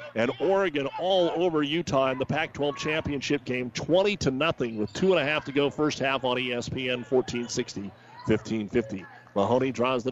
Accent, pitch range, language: American, 125-155 Hz, English